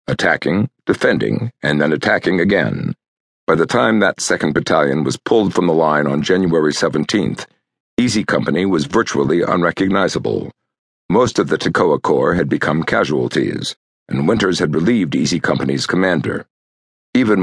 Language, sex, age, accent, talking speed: English, male, 60-79, American, 140 wpm